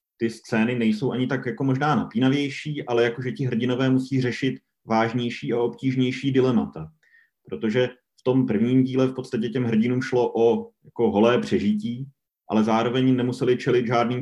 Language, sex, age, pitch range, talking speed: Slovak, male, 30-49, 105-125 Hz, 160 wpm